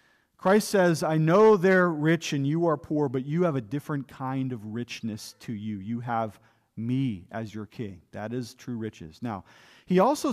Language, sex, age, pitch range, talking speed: English, male, 40-59, 150-185 Hz, 190 wpm